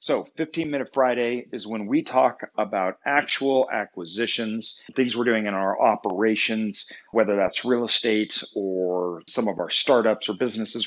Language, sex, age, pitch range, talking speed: English, male, 40-59, 105-130 Hz, 155 wpm